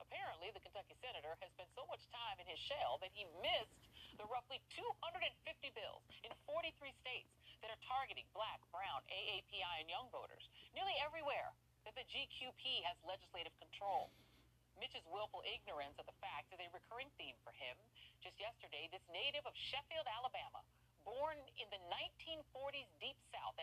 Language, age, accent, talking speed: English, 40-59, American, 165 wpm